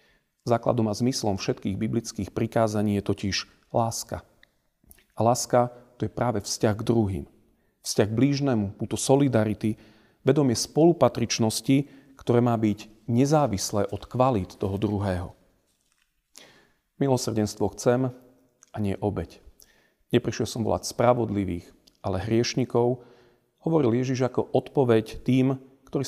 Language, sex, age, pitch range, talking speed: Slovak, male, 40-59, 105-130 Hz, 110 wpm